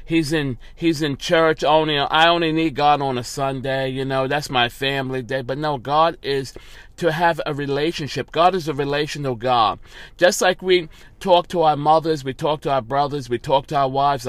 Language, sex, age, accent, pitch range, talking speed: English, male, 40-59, American, 140-175 Hz, 205 wpm